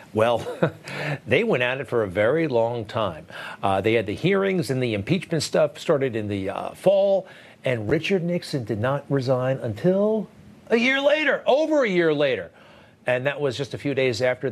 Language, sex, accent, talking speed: English, male, American, 190 wpm